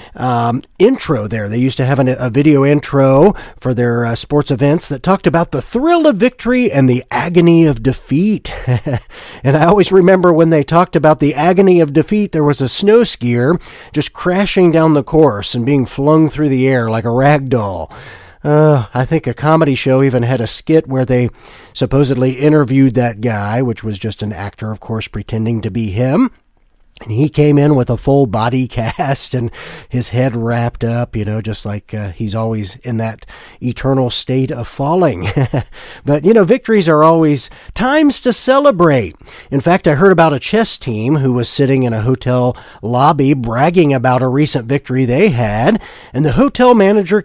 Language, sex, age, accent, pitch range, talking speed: English, male, 40-59, American, 120-165 Hz, 190 wpm